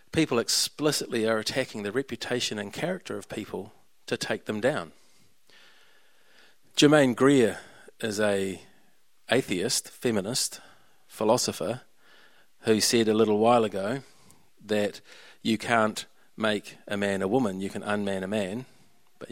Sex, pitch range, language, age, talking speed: male, 105-125 Hz, English, 40-59, 125 wpm